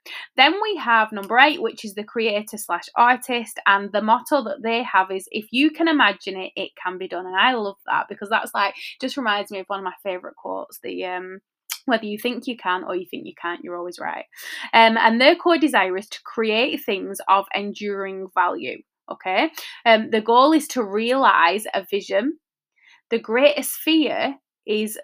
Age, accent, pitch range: 20-39, British, 200-275 Hz